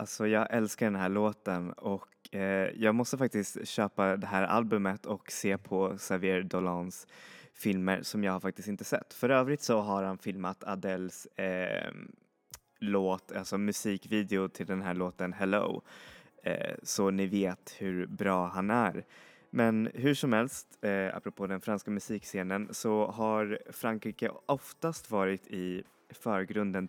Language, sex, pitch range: Swedish, male, 95-110 Hz